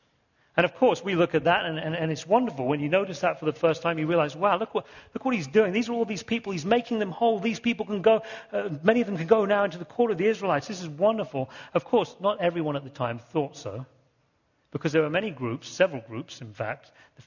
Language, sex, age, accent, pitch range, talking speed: English, male, 40-59, British, 145-195 Hz, 270 wpm